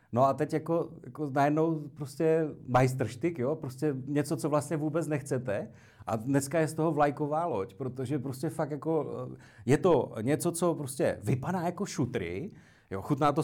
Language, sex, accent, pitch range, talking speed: Czech, male, native, 130-160 Hz, 165 wpm